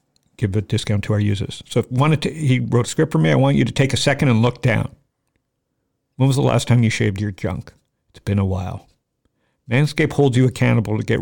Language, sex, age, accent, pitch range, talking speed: English, male, 50-69, American, 105-125 Hz, 240 wpm